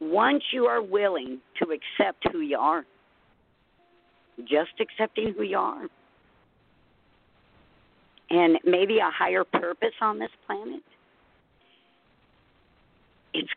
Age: 50-69